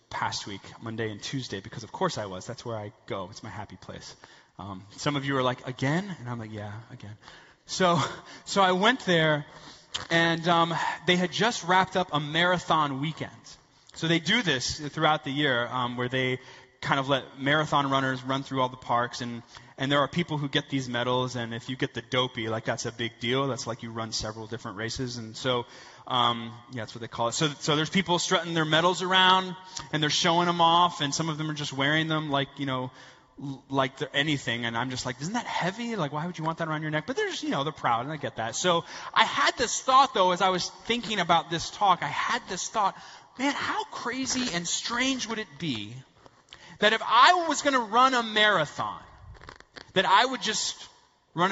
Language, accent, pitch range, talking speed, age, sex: English, American, 125-175 Hz, 225 wpm, 20-39, male